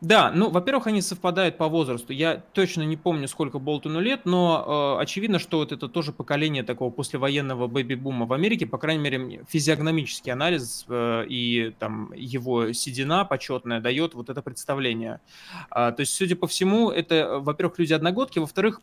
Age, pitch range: 20-39, 130-170 Hz